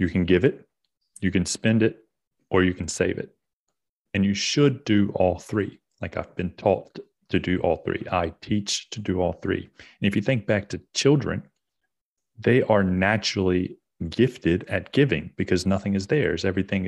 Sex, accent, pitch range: male, American, 90-105 Hz